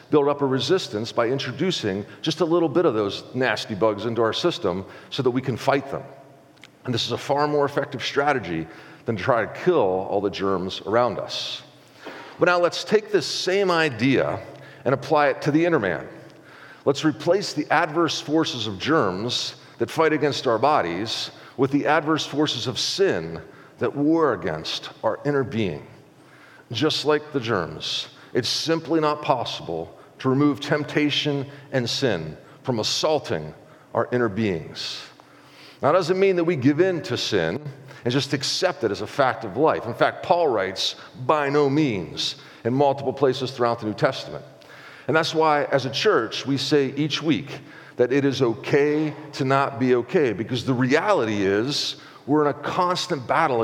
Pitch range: 125-155 Hz